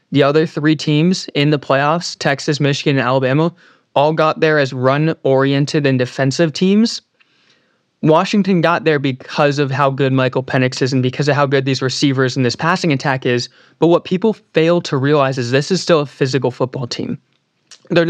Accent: American